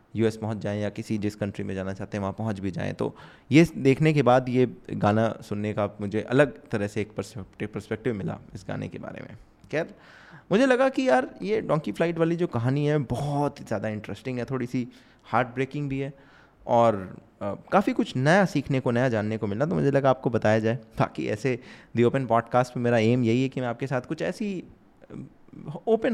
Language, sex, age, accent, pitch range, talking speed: Hindi, male, 20-39, native, 110-145 Hz, 210 wpm